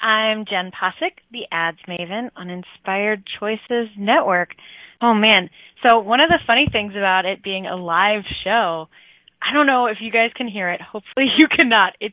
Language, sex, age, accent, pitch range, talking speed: English, female, 20-39, American, 190-245 Hz, 185 wpm